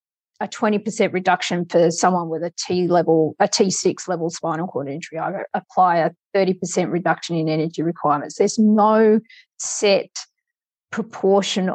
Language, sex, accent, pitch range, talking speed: English, female, Australian, 175-215 Hz, 155 wpm